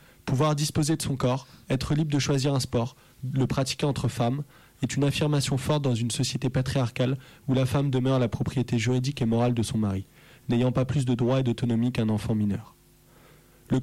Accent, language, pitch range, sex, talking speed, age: French, French, 125-150 Hz, male, 200 wpm, 20-39